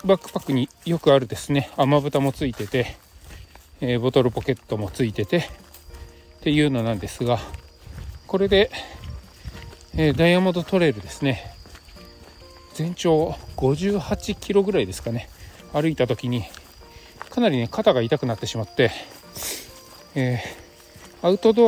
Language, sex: Japanese, male